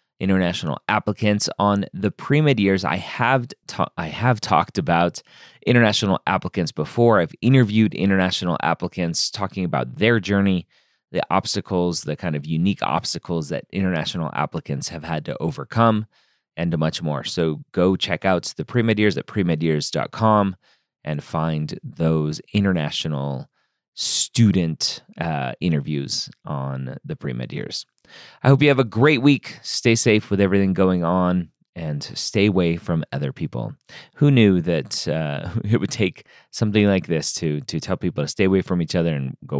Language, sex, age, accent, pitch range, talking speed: English, male, 30-49, American, 80-105 Hz, 155 wpm